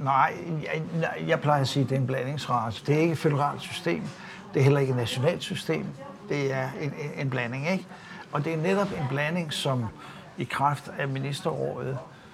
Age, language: 60-79, Danish